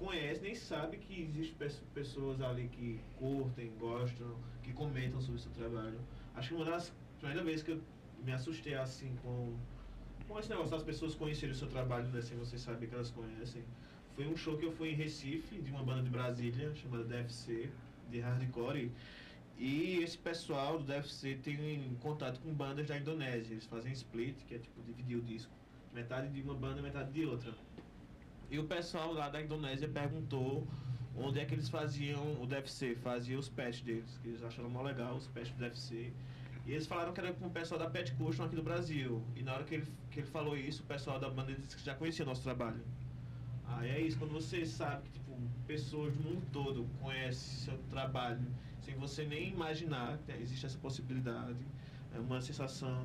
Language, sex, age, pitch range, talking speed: Portuguese, male, 20-39, 120-150 Hz, 200 wpm